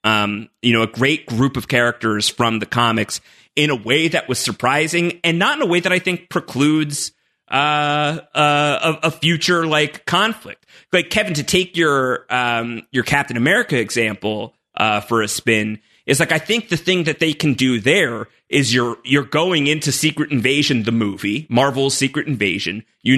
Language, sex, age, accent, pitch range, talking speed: English, male, 30-49, American, 120-155 Hz, 180 wpm